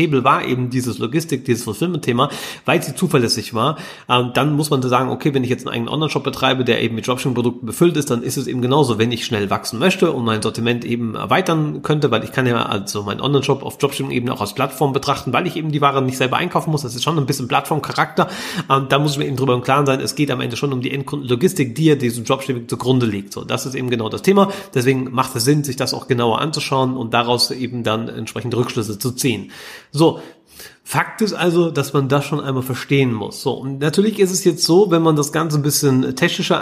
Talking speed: 245 wpm